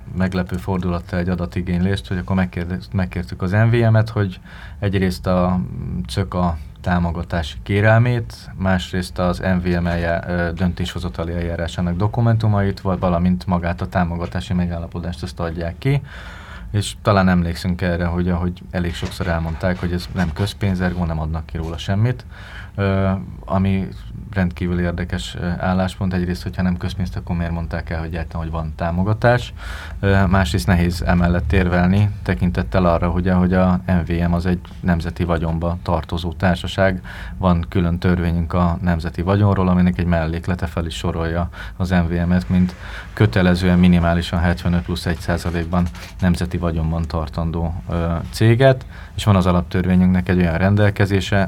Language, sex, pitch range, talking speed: Hungarian, male, 85-95 Hz, 135 wpm